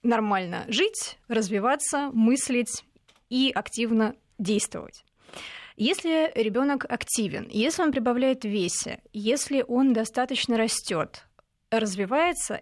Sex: female